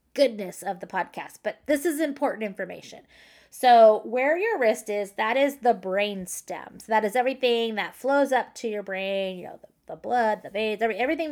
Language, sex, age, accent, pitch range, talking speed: English, female, 20-39, American, 195-245 Hz, 195 wpm